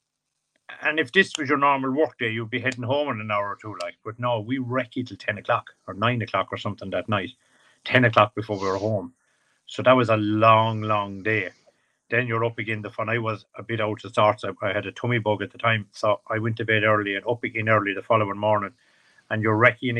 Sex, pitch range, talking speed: male, 105-120 Hz, 250 wpm